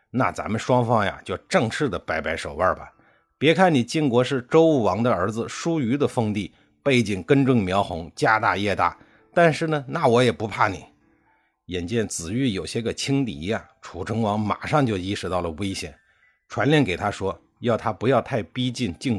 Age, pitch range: 50-69, 100-140 Hz